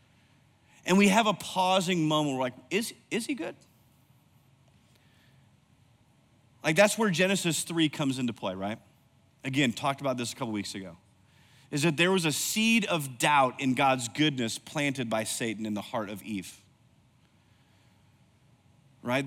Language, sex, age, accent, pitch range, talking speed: English, male, 30-49, American, 130-185 Hz, 160 wpm